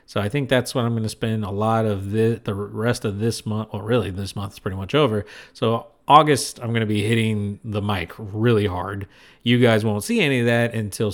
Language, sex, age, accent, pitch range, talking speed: English, male, 40-59, American, 105-130 Hz, 240 wpm